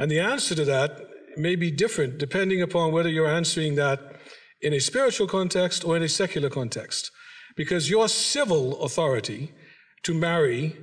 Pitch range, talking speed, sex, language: 150-180 Hz, 160 wpm, male, English